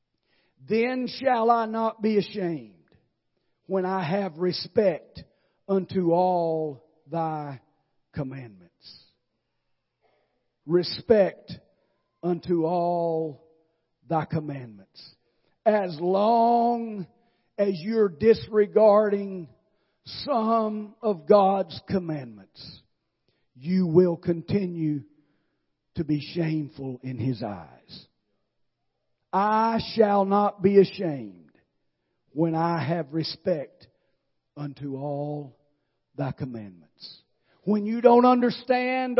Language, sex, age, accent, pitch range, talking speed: English, male, 50-69, American, 140-210 Hz, 85 wpm